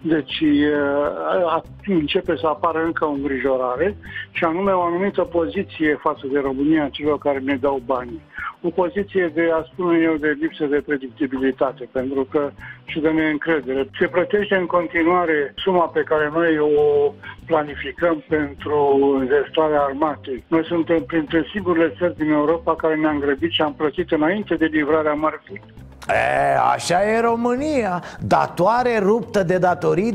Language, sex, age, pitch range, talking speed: Romanian, male, 60-79, 150-195 Hz, 145 wpm